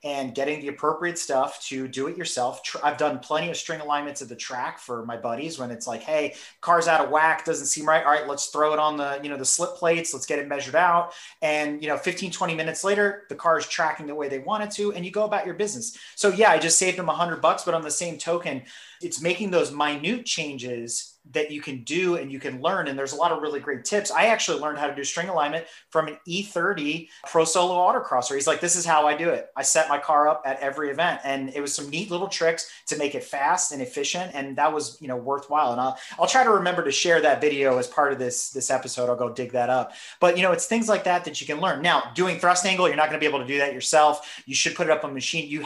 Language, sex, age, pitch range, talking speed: English, male, 30-49, 140-175 Hz, 275 wpm